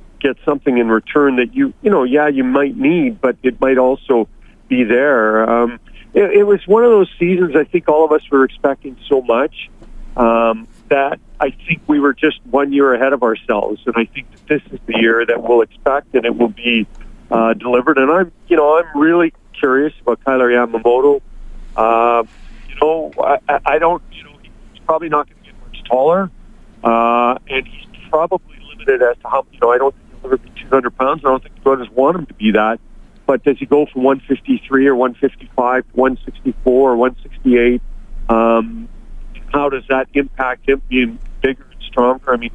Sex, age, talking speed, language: male, 40-59, 205 wpm, English